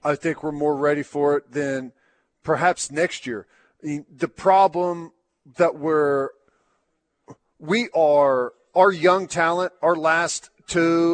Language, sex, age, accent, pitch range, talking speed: English, male, 40-59, American, 145-175 Hz, 125 wpm